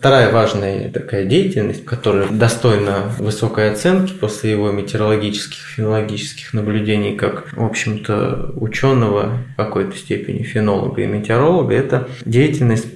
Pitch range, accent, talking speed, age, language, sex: 110-135 Hz, native, 120 wpm, 20-39, Russian, male